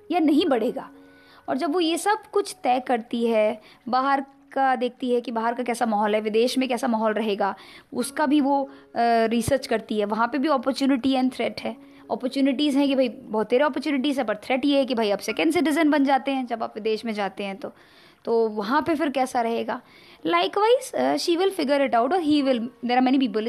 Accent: native